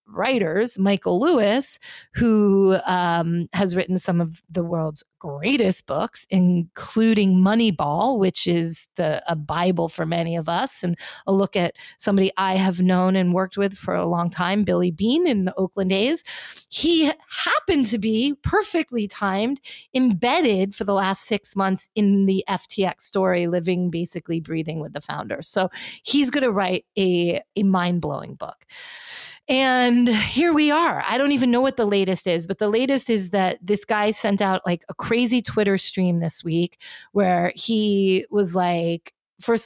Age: 30-49